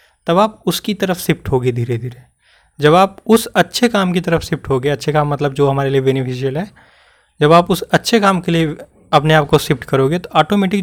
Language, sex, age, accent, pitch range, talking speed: Hindi, male, 20-39, native, 130-180 Hz, 215 wpm